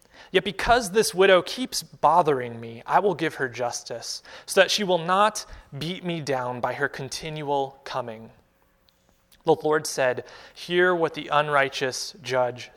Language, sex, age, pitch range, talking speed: English, male, 30-49, 130-185 Hz, 150 wpm